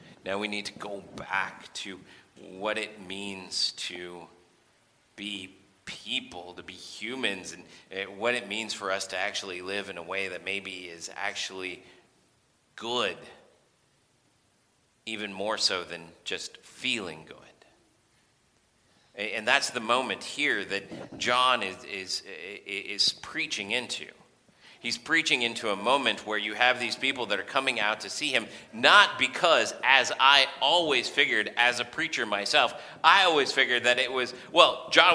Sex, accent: male, American